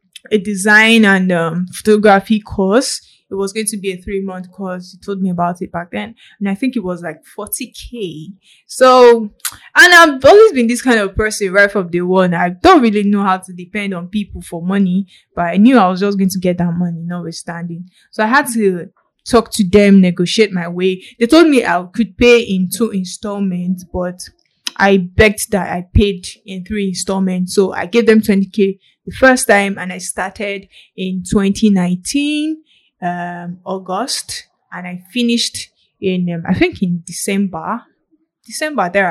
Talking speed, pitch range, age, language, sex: 180 wpm, 185-225 Hz, 10-29, English, female